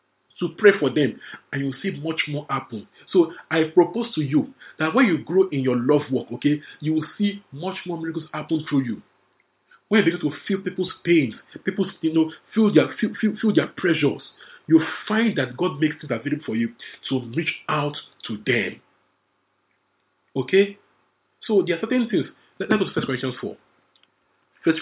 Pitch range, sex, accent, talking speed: 125-165 Hz, male, Nigerian, 190 wpm